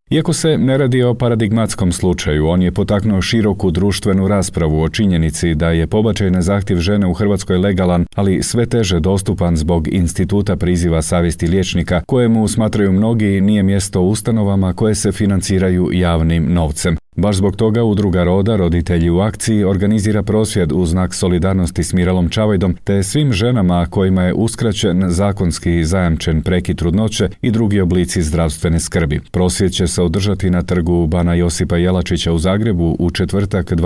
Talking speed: 160 wpm